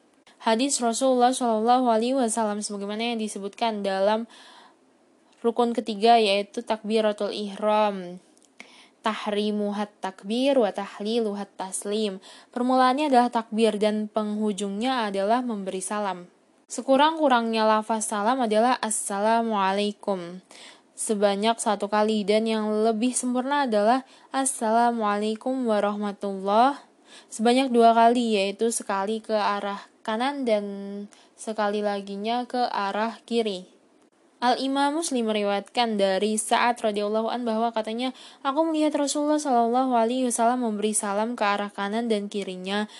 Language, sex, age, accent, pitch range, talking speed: Indonesian, female, 10-29, native, 210-250 Hz, 105 wpm